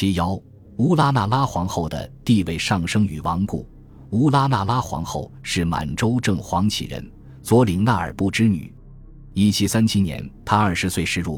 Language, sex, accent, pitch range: Chinese, male, native, 85-115 Hz